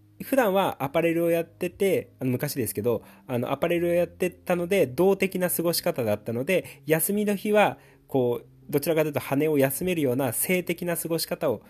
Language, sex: Japanese, male